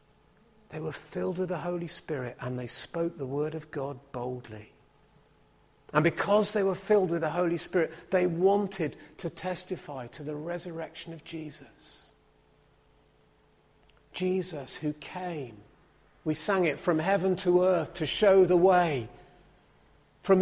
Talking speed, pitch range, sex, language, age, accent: 140 wpm, 145-185 Hz, male, English, 40-59, British